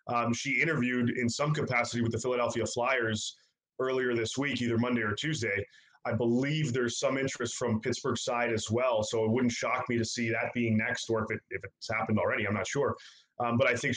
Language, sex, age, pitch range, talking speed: English, male, 20-39, 115-125 Hz, 220 wpm